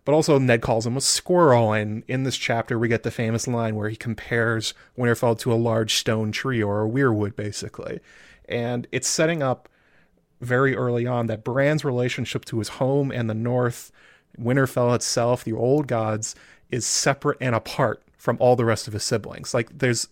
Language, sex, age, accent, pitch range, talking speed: English, male, 30-49, American, 115-130 Hz, 190 wpm